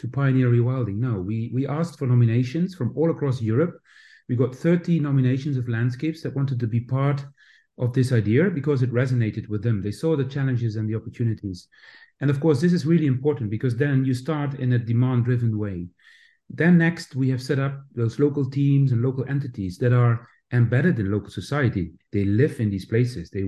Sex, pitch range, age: male, 110-140 Hz, 40-59